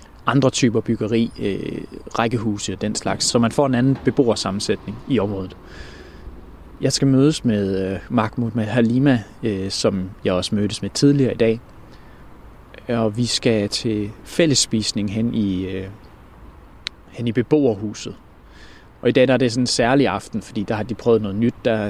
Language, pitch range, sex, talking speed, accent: Danish, 100-125 Hz, male, 165 wpm, native